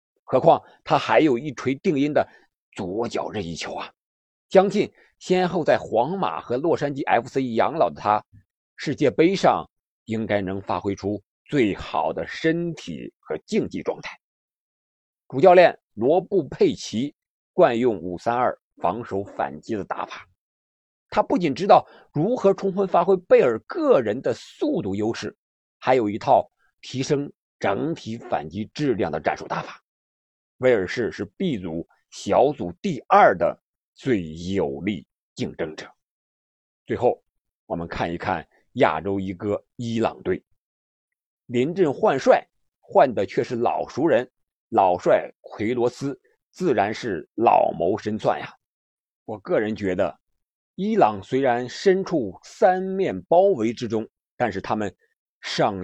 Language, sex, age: Chinese, male, 50-69